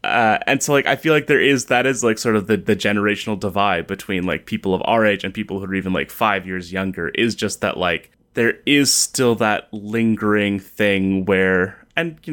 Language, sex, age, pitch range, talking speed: English, male, 20-39, 95-115 Hz, 225 wpm